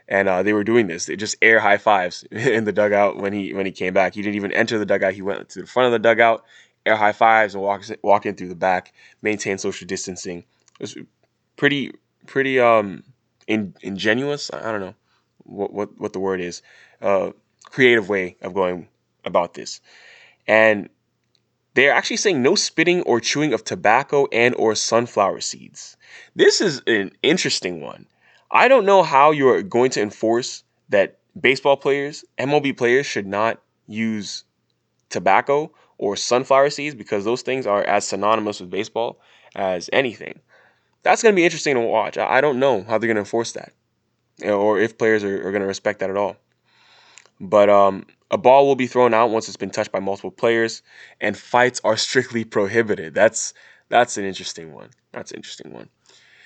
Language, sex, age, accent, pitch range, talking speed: English, male, 10-29, American, 100-130 Hz, 185 wpm